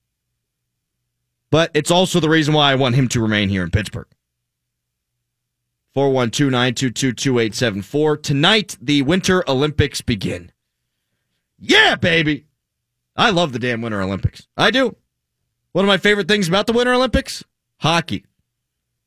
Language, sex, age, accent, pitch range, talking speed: English, male, 30-49, American, 120-175 Hz, 125 wpm